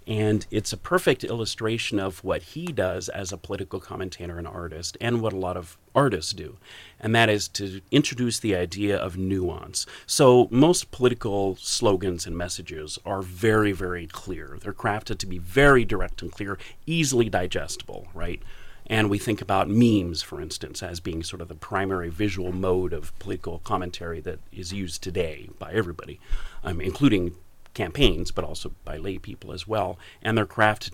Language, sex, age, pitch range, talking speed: English, male, 40-59, 90-110 Hz, 175 wpm